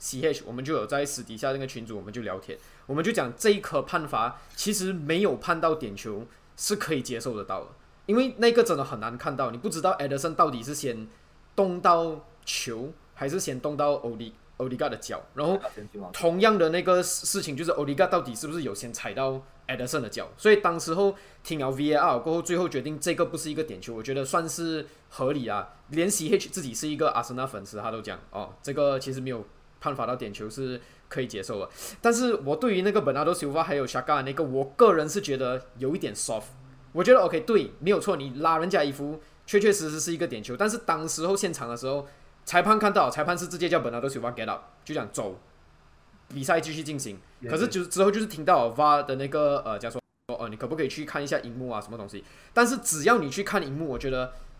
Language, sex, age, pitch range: Chinese, male, 20-39, 130-175 Hz